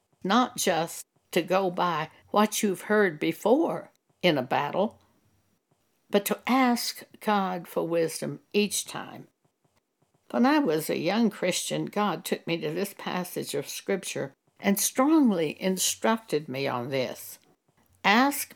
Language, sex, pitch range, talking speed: English, female, 180-230 Hz, 135 wpm